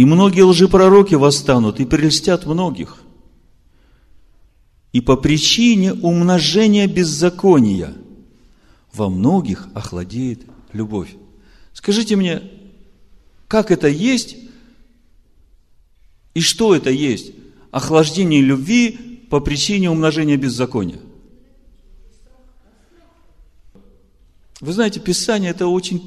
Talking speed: 85 wpm